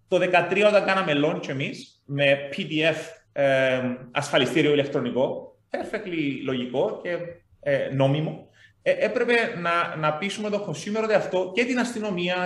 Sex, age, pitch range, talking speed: male, 30-49, 155-210 Hz, 130 wpm